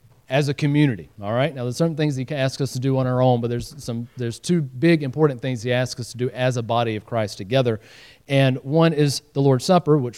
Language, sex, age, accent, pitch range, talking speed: English, male, 40-59, American, 120-150 Hz, 255 wpm